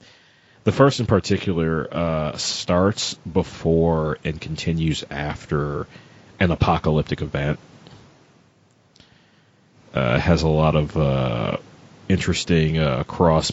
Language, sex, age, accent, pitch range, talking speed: English, male, 30-49, American, 75-90 Hz, 100 wpm